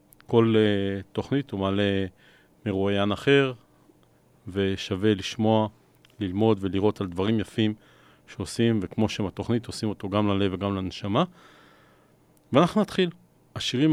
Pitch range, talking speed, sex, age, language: 100-120 Hz, 115 wpm, male, 40-59, Hebrew